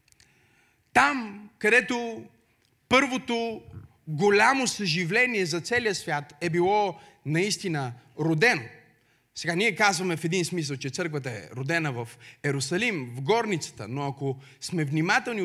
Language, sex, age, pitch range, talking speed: Bulgarian, male, 30-49, 165-245 Hz, 115 wpm